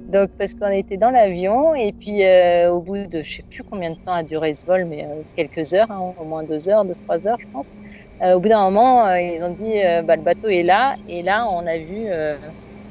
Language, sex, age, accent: French, female, 40-59, French